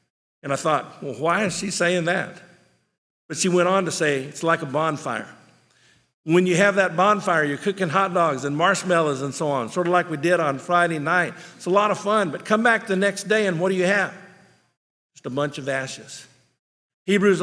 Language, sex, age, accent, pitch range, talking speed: English, male, 50-69, American, 145-185 Hz, 215 wpm